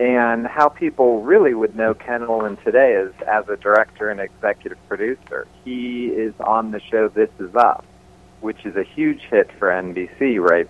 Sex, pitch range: male, 95-115 Hz